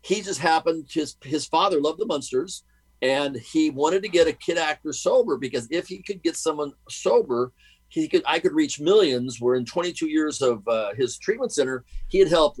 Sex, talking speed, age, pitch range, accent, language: male, 205 wpm, 50-69, 125-165 Hz, American, English